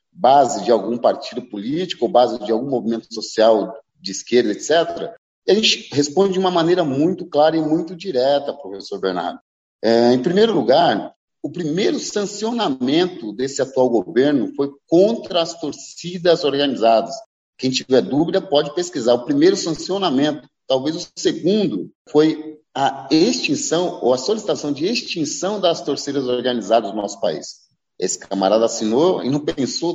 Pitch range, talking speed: 135-210 Hz, 145 wpm